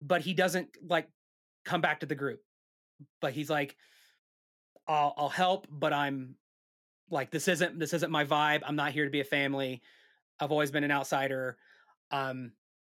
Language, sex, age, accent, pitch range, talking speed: English, male, 30-49, American, 135-165 Hz, 170 wpm